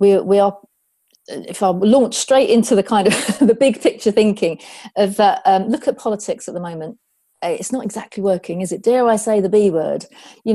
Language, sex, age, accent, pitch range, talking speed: English, female, 40-59, British, 185-250 Hz, 210 wpm